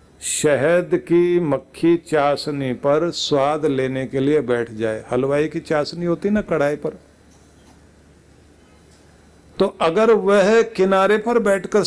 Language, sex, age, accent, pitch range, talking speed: Hindi, male, 50-69, native, 125-175 Hz, 120 wpm